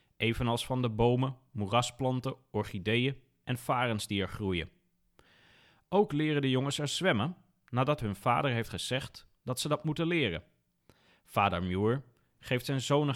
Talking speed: 145 wpm